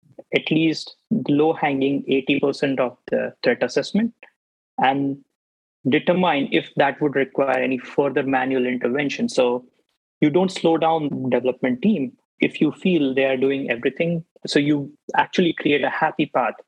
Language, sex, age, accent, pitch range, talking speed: English, male, 20-39, Indian, 130-160 Hz, 145 wpm